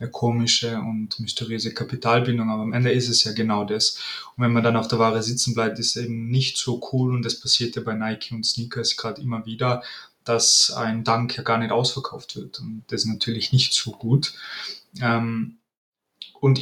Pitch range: 115-130 Hz